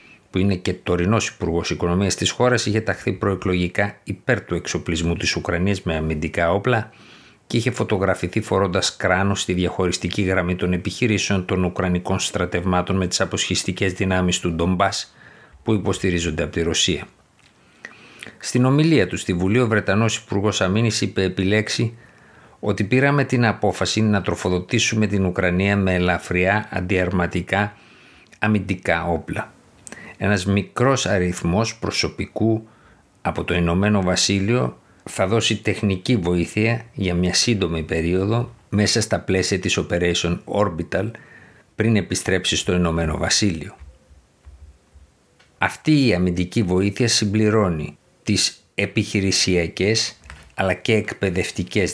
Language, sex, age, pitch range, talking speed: Greek, male, 50-69, 90-105 Hz, 120 wpm